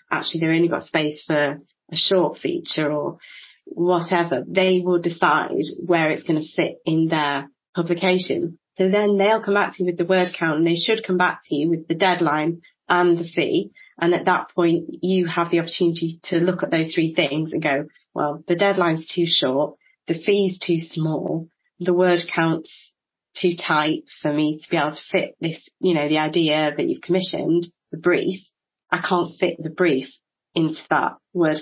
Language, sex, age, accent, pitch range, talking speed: English, female, 30-49, British, 160-185 Hz, 190 wpm